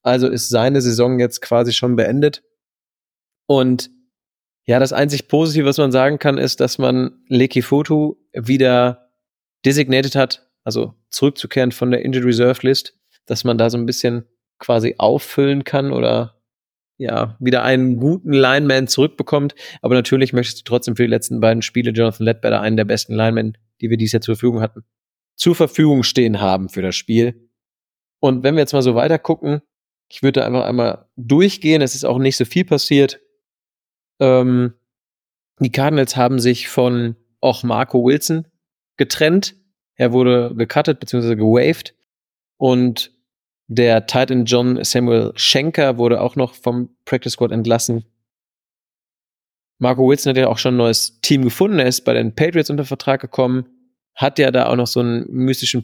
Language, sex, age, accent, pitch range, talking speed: German, male, 30-49, German, 120-135 Hz, 165 wpm